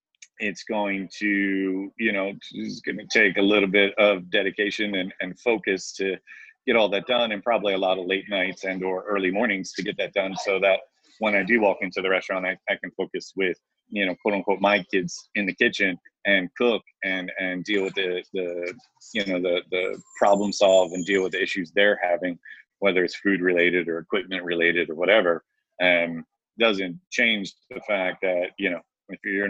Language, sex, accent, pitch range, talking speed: English, male, American, 95-105 Hz, 205 wpm